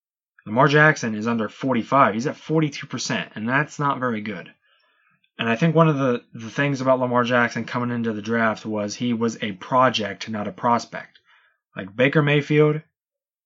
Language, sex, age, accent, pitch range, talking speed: English, male, 20-39, American, 120-160 Hz, 175 wpm